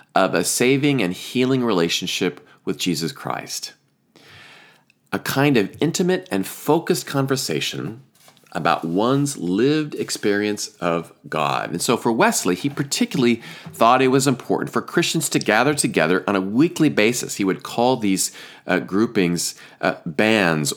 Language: English